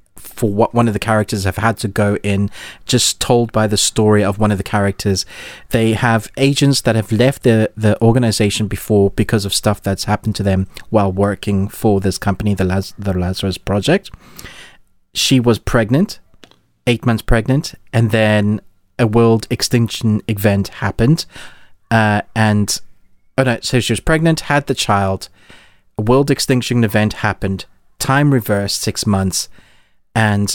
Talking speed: 160 wpm